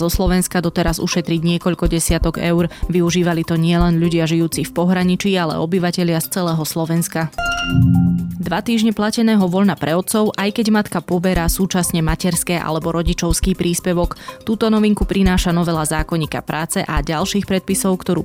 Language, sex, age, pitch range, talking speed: Slovak, female, 20-39, 165-180 Hz, 145 wpm